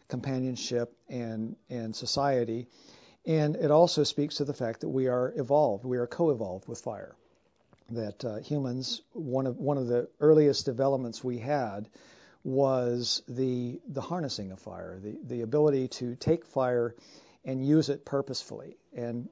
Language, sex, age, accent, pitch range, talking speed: English, male, 50-69, American, 120-145 Hz, 150 wpm